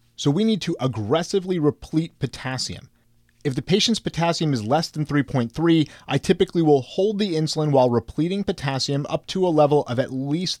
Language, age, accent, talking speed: English, 30-49, American, 175 wpm